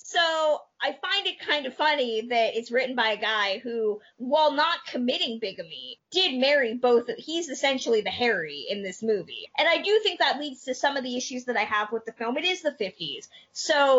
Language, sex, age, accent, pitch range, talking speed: English, female, 20-39, American, 225-290 Hz, 215 wpm